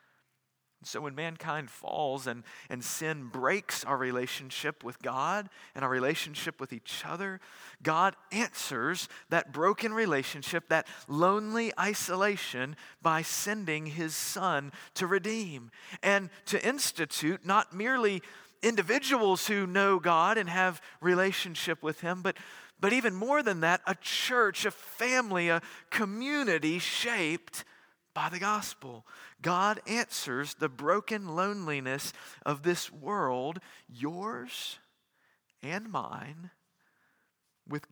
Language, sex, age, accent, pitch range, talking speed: English, male, 40-59, American, 145-200 Hz, 115 wpm